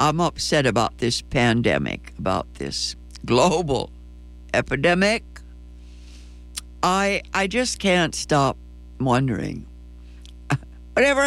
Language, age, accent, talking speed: English, 60-79, American, 85 wpm